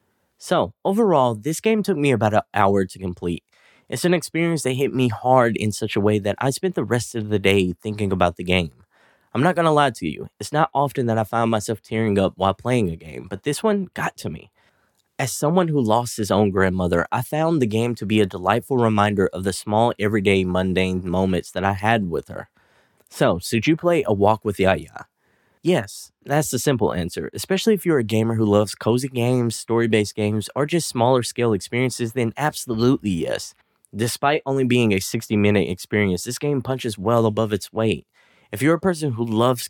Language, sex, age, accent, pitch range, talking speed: English, male, 10-29, American, 100-130 Hz, 210 wpm